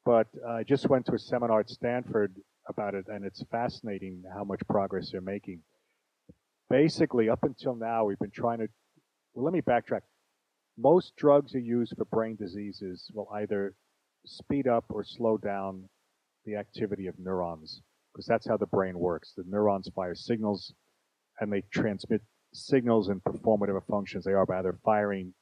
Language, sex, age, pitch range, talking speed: English, male, 40-59, 95-115 Hz, 170 wpm